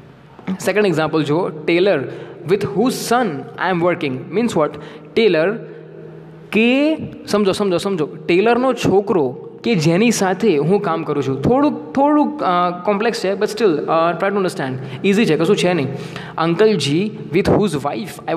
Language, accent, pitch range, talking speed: English, Indian, 155-215 Hz, 125 wpm